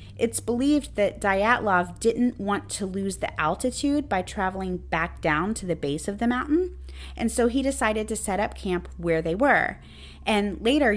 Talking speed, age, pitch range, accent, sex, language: 180 wpm, 30-49, 160-235 Hz, American, female, English